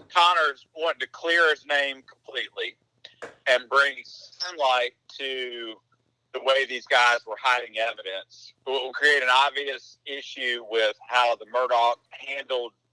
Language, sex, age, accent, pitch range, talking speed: English, male, 50-69, American, 120-150 Hz, 135 wpm